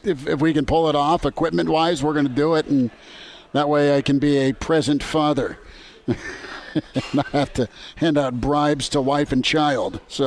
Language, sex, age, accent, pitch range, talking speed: English, male, 50-69, American, 140-160 Hz, 200 wpm